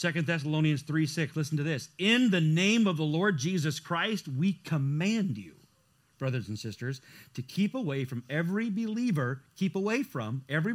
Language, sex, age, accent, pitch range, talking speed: English, male, 40-59, American, 140-225 Hz, 175 wpm